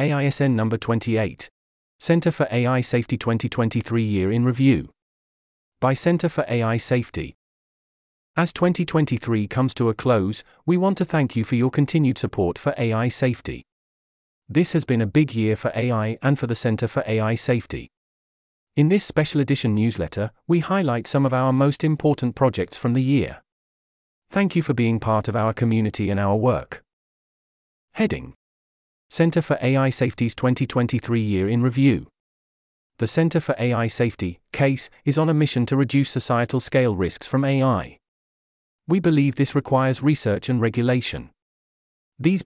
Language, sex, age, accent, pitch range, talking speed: English, male, 40-59, British, 105-140 Hz, 155 wpm